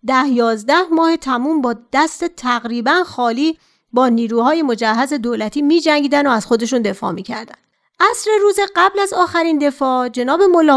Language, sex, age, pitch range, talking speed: Persian, female, 40-59, 230-330 Hz, 145 wpm